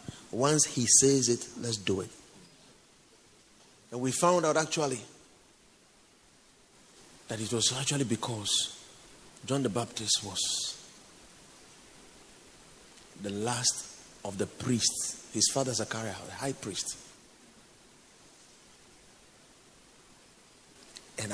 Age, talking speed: 50-69, 95 wpm